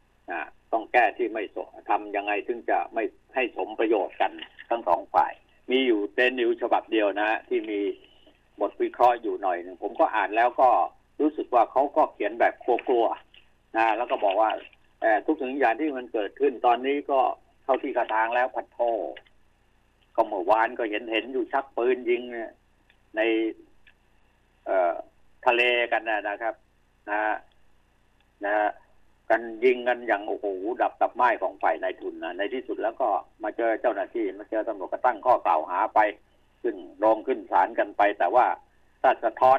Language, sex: Thai, male